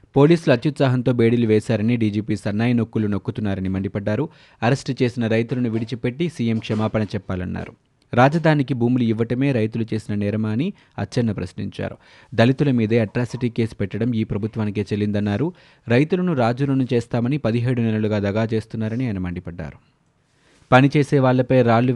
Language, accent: Telugu, native